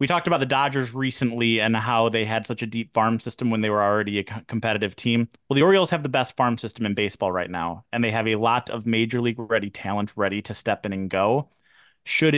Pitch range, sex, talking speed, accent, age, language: 105-125 Hz, male, 245 wpm, American, 30-49, English